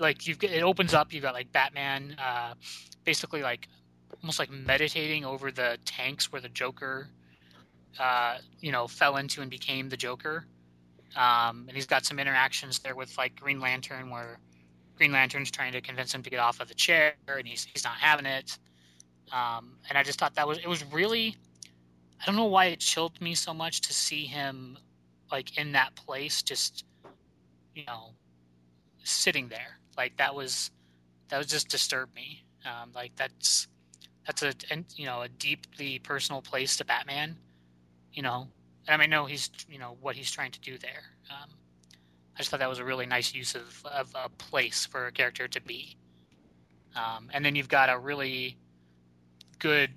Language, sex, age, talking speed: English, male, 20-39, 185 wpm